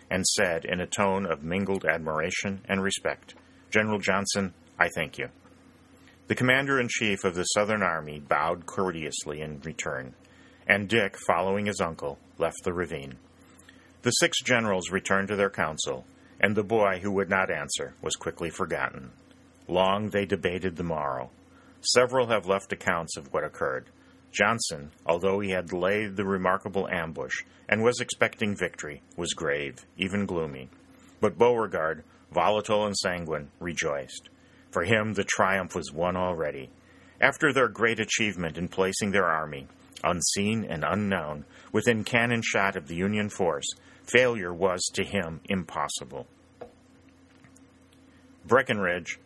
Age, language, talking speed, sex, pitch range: 40-59, English, 140 wpm, male, 85-105 Hz